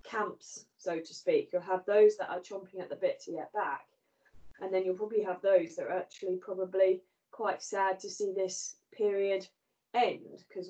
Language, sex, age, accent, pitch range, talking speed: English, female, 20-39, British, 180-200 Hz, 190 wpm